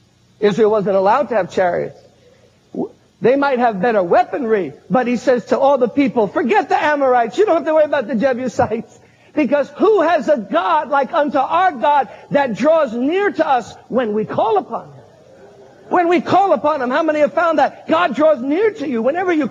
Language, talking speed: English, 200 wpm